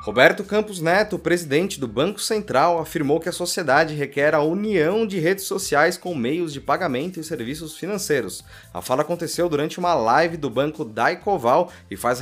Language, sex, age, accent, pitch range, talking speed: Portuguese, male, 20-39, Brazilian, 120-175 Hz, 170 wpm